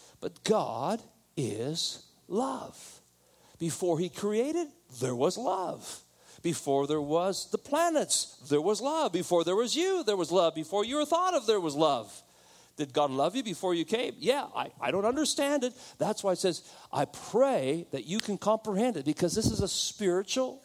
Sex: male